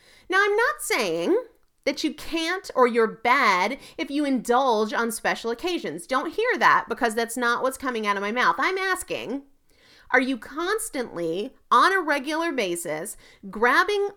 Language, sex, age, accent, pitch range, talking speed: English, female, 30-49, American, 220-290 Hz, 160 wpm